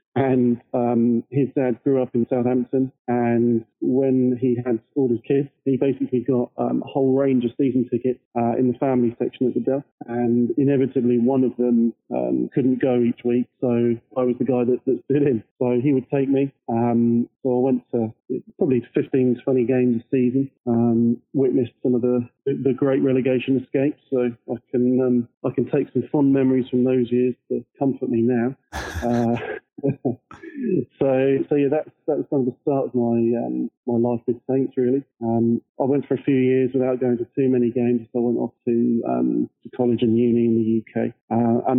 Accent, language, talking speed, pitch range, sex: British, English, 200 wpm, 120-135 Hz, male